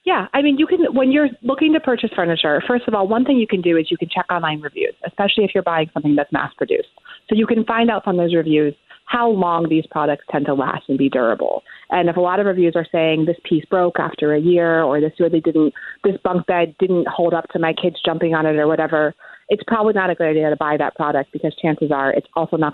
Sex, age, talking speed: female, 30-49, 260 wpm